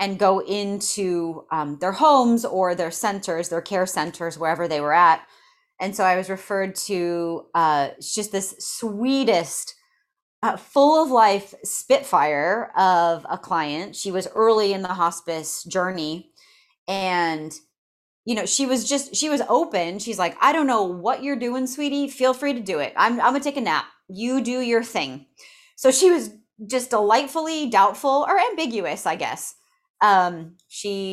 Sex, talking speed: female, 165 wpm